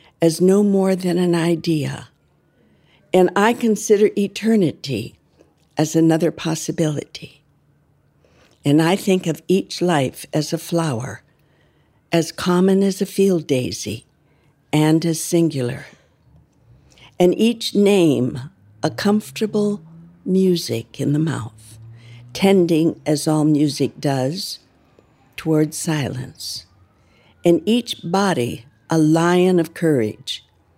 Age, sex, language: 60-79, female, English